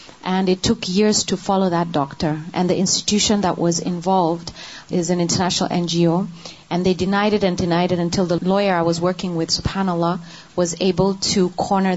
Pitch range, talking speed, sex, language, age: 175-205 Hz, 185 wpm, female, Urdu, 30-49